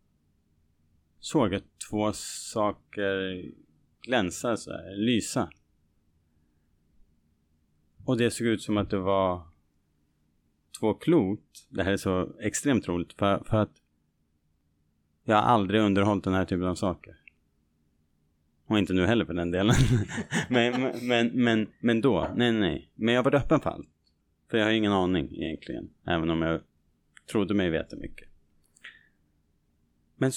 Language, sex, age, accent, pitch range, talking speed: Swedish, male, 30-49, Norwegian, 80-110 Hz, 140 wpm